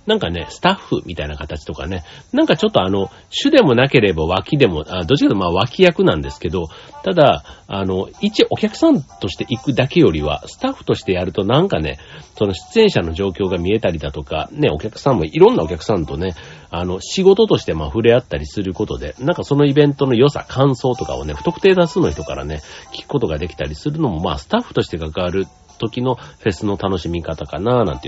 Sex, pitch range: male, 85-125 Hz